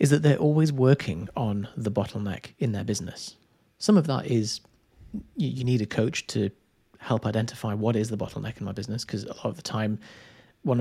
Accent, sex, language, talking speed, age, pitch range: British, male, English, 200 wpm, 30-49, 105-125 Hz